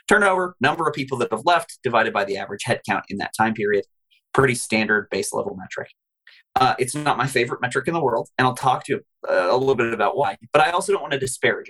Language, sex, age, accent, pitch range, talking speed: English, male, 30-49, American, 115-150 Hz, 240 wpm